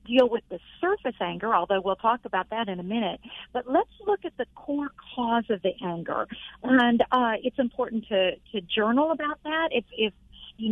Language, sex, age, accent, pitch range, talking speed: English, female, 50-69, American, 200-255 Hz, 195 wpm